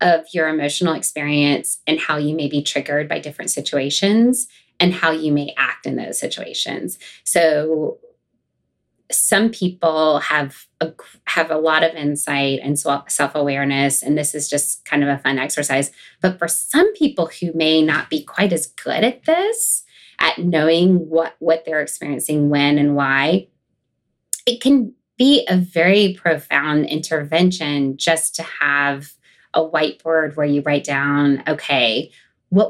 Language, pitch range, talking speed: English, 145-180 Hz, 150 wpm